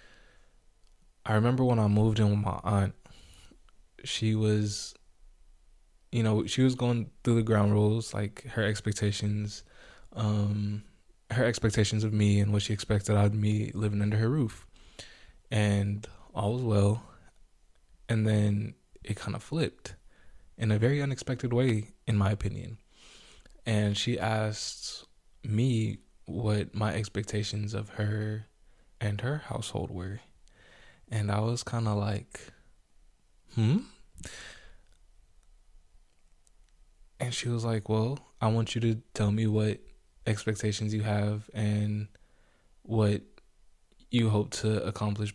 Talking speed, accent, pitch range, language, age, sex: 130 wpm, American, 100-110 Hz, English, 20-39, male